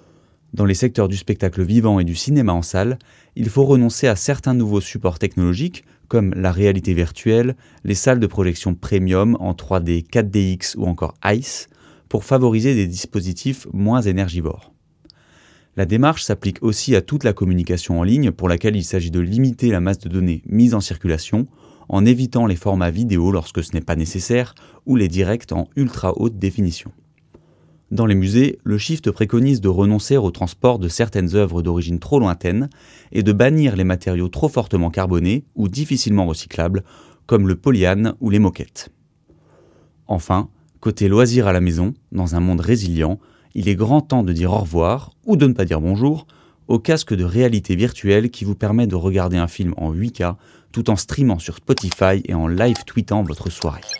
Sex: male